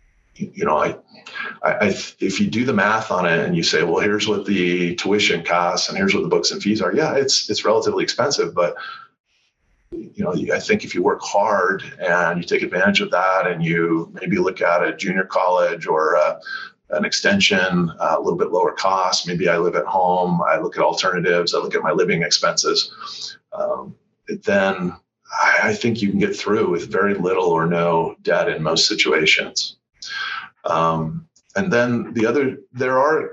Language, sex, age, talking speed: English, male, 40-59, 190 wpm